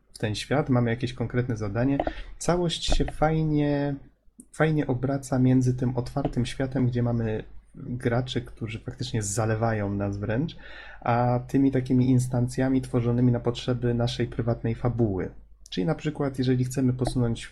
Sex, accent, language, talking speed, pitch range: male, native, Polish, 135 wpm, 115-130 Hz